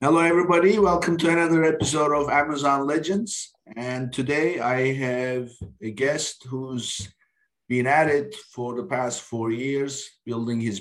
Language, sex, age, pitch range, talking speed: English, male, 50-69, 120-150 Hz, 145 wpm